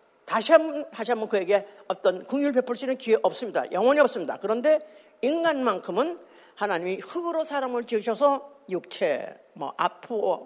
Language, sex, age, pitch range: Korean, female, 50-69, 225-330 Hz